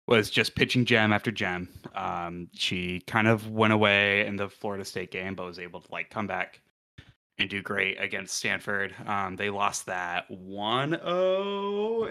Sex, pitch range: male, 95-125 Hz